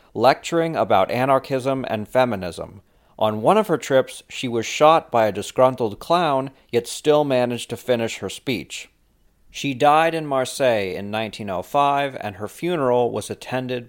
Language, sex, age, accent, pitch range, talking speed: English, male, 40-59, American, 100-135 Hz, 150 wpm